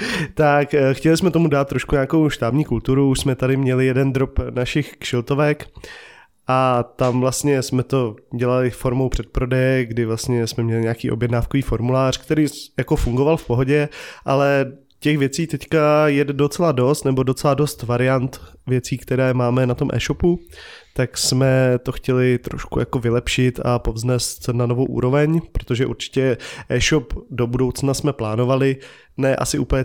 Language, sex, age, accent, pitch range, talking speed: Czech, male, 20-39, native, 120-135 Hz, 155 wpm